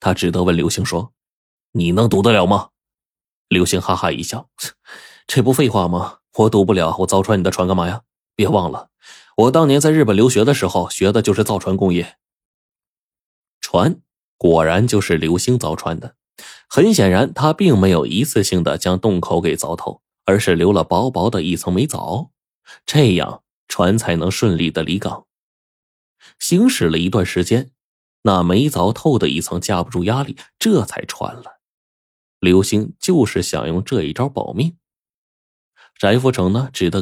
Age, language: 20-39, Chinese